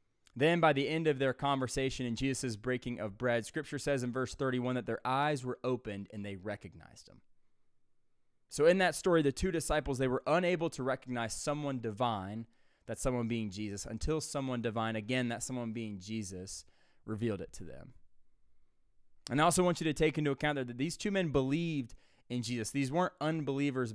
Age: 20-39